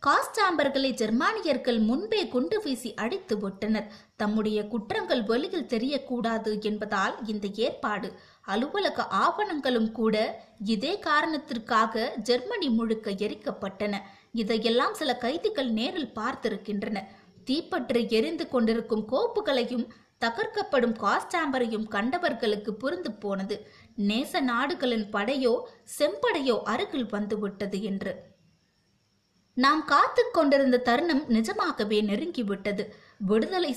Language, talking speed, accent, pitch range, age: Tamil, 90 wpm, native, 215-290 Hz, 20-39